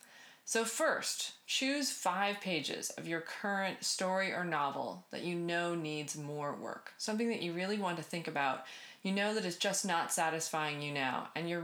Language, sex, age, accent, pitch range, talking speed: English, female, 30-49, American, 165-225 Hz, 185 wpm